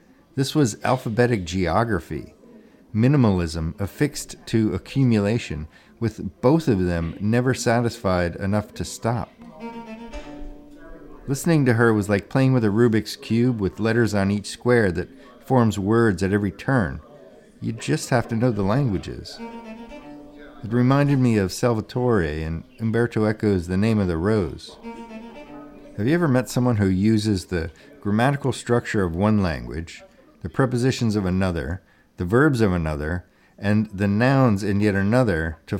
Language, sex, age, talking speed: English, male, 50-69, 145 wpm